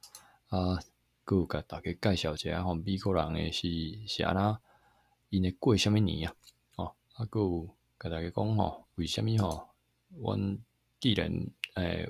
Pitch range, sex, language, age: 80-100 Hz, male, Chinese, 20-39